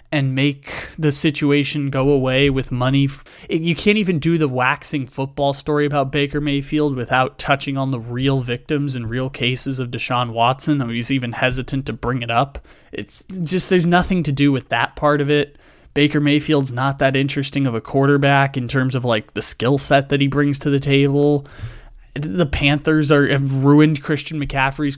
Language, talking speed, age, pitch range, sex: English, 190 wpm, 20-39, 130-150 Hz, male